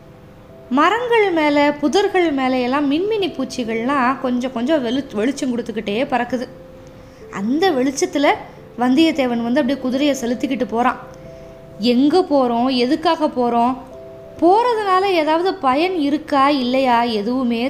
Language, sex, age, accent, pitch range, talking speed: Tamil, female, 20-39, native, 250-325 Hz, 100 wpm